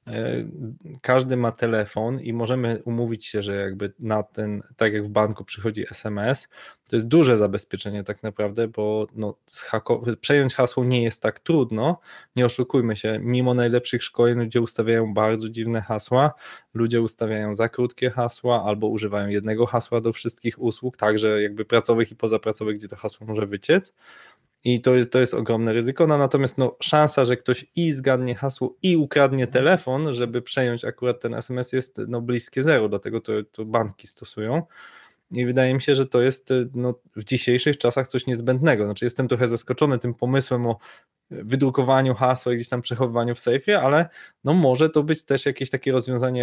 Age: 20-39